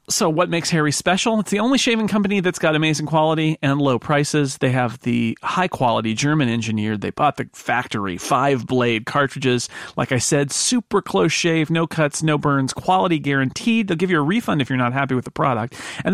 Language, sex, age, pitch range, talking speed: English, male, 40-59, 130-175 Hz, 195 wpm